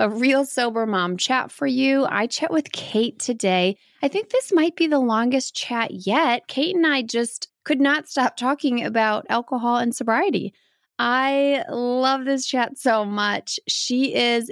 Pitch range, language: 220-280 Hz, English